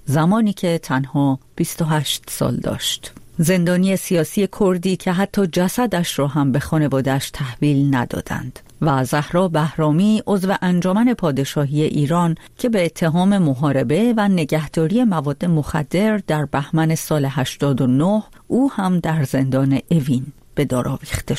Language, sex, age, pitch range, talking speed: Persian, female, 40-59, 145-190 Hz, 125 wpm